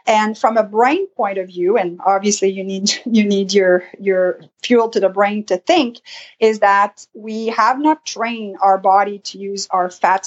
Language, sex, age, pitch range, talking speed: English, female, 40-59, 185-225 Hz, 195 wpm